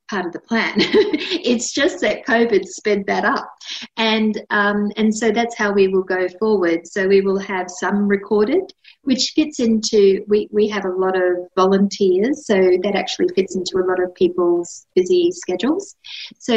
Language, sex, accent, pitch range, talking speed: English, female, Australian, 185-220 Hz, 180 wpm